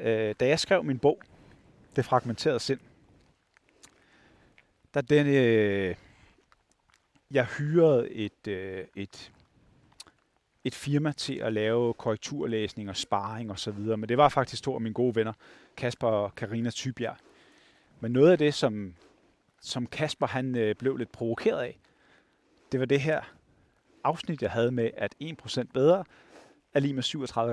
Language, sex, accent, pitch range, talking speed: Danish, male, native, 110-140 Hz, 140 wpm